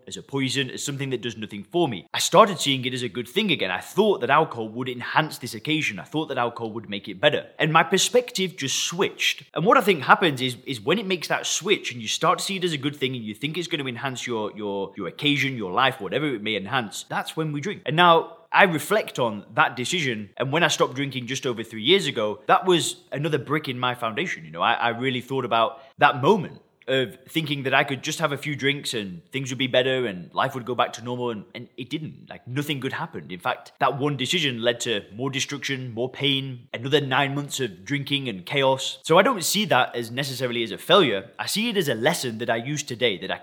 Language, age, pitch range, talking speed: English, 20-39, 125-160 Hz, 255 wpm